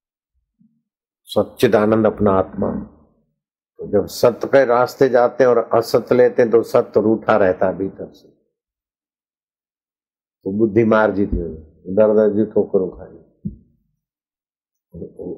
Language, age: Hindi, 50-69